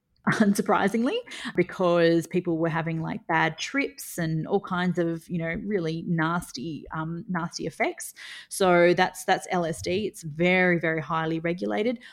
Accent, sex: Australian, female